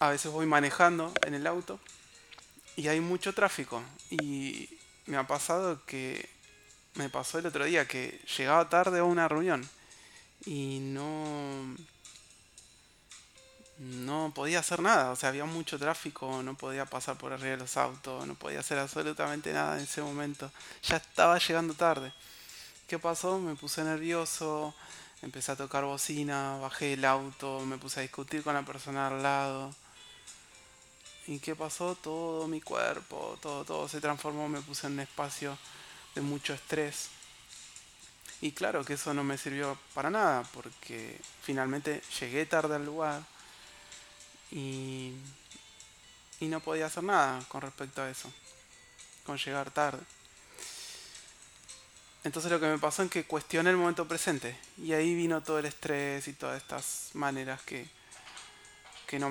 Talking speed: 150 wpm